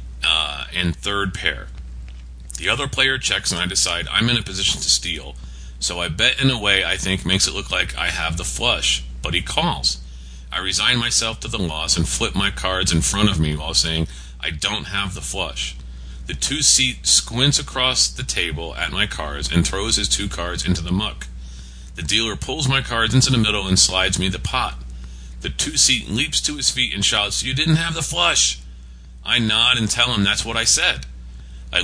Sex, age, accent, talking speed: male, 40-59, American, 205 wpm